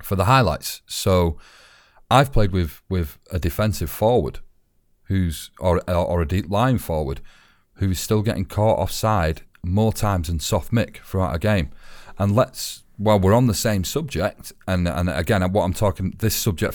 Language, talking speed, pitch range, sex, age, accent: English, 175 wpm, 85-110 Hz, male, 40-59, British